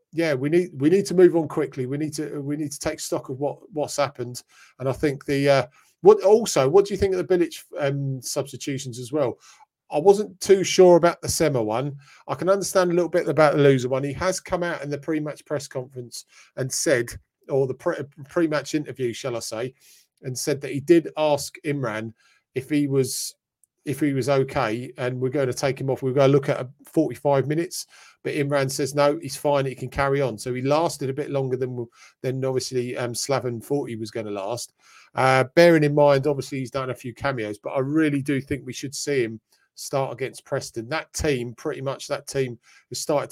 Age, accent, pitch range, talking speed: 40-59, British, 130-150 Hz, 220 wpm